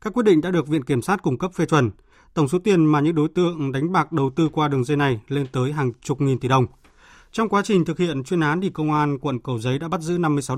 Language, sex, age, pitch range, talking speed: Vietnamese, male, 20-39, 135-170 Hz, 290 wpm